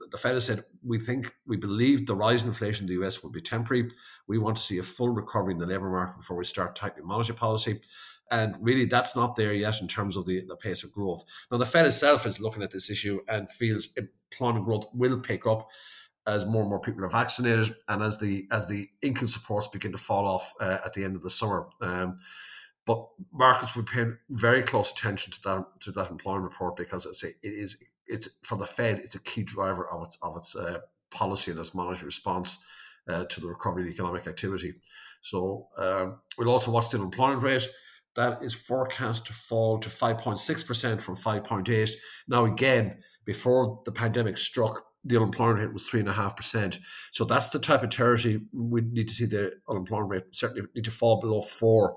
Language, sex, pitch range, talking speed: English, male, 100-120 Hz, 220 wpm